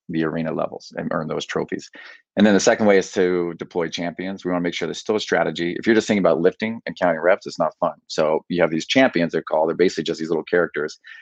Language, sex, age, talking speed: English, male, 30-49, 265 wpm